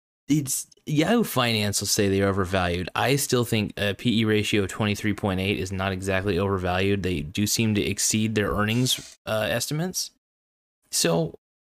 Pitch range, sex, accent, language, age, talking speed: 95-115 Hz, male, American, English, 20-39, 145 wpm